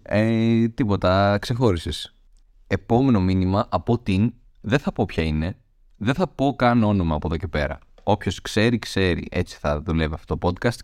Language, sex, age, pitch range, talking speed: Greek, male, 30-49, 85-115 Hz, 160 wpm